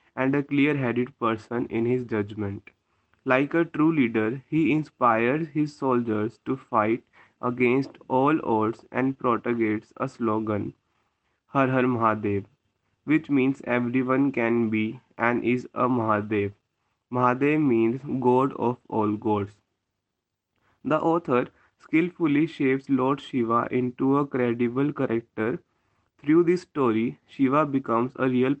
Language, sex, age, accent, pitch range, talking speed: English, male, 20-39, Indian, 110-135 Hz, 125 wpm